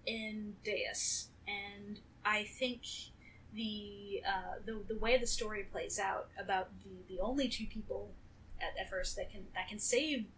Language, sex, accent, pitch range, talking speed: English, female, American, 205-245 Hz, 160 wpm